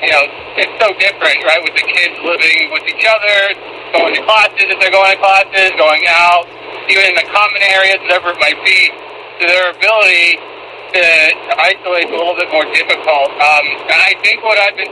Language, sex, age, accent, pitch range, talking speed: English, male, 50-69, American, 175-220 Hz, 205 wpm